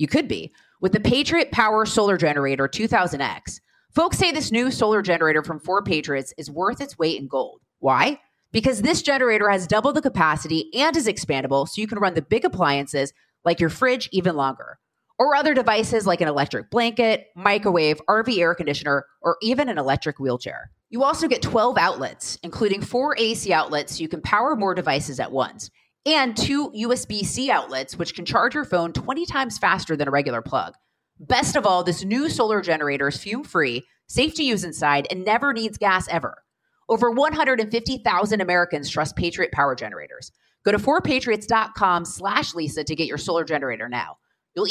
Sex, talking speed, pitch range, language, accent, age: female, 175 wpm, 160-245 Hz, English, American, 30-49